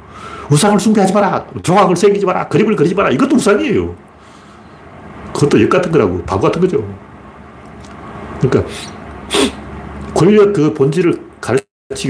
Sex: male